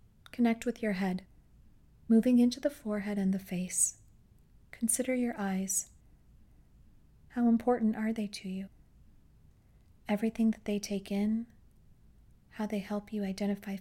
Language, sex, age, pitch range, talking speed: English, female, 30-49, 190-215 Hz, 130 wpm